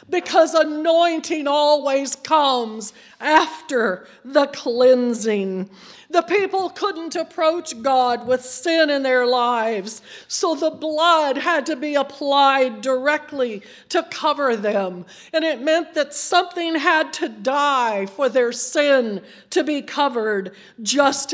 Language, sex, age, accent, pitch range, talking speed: English, female, 50-69, American, 225-290 Hz, 120 wpm